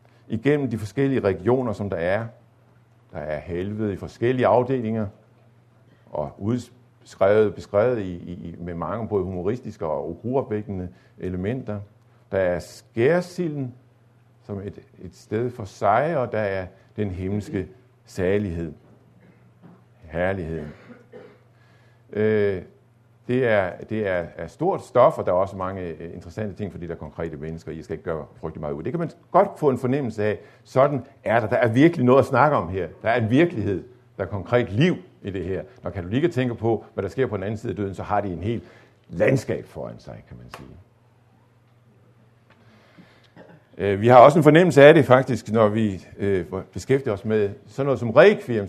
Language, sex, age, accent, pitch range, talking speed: Danish, male, 50-69, native, 100-120 Hz, 170 wpm